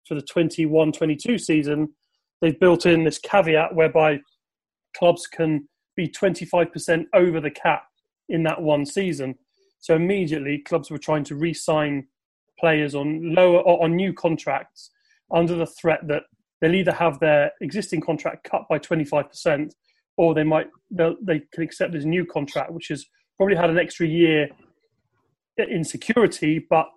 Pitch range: 150-170 Hz